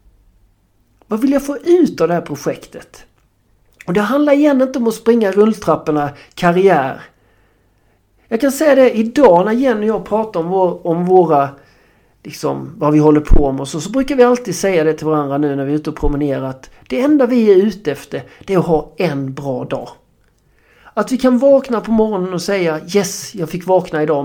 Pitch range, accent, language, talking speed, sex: 150-225 Hz, native, Swedish, 205 wpm, male